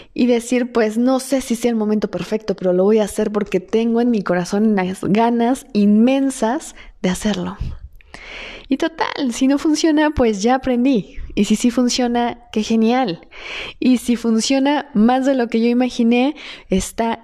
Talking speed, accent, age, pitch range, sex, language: 170 wpm, Mexican, 20-39, 210-255 Hz, female, Spanish